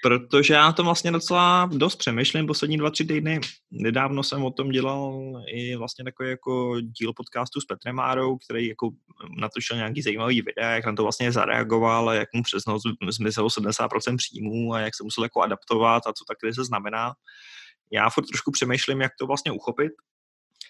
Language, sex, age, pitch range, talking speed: Slovak, male, 20-39, 110-135 Hz, 180 wpm